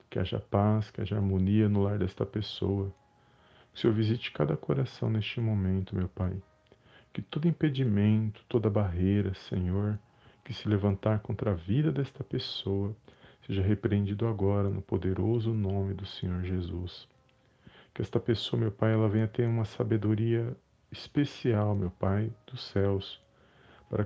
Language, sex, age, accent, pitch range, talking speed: Portuguese, male, 40-59, Brazilian, 100-115 Hz, 145 wpm